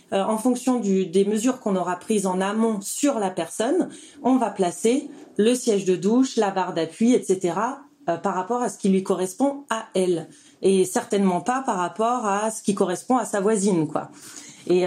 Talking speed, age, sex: 200 wpm, 30-49, female